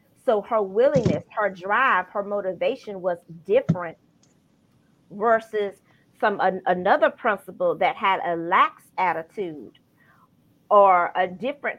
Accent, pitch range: American, 195-255 Hz